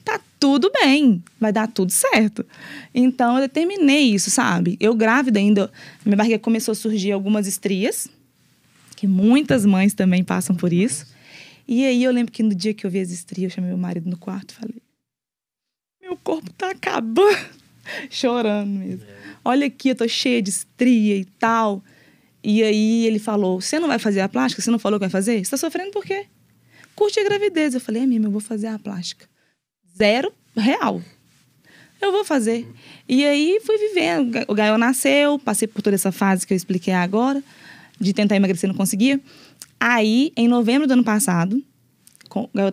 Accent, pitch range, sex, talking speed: Brazilian, 200-265 Hz, female, 185 wpm